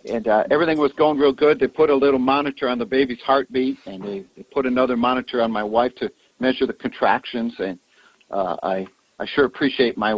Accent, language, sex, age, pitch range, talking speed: American, English, male, 60-79, 125-160 Hz, 210 wpm